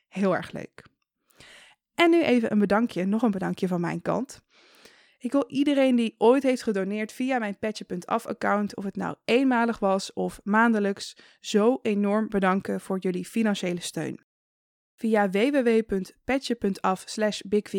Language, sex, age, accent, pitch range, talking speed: Dutch, female, 20-39, Dutch, 195-245 Hz, 140 wpm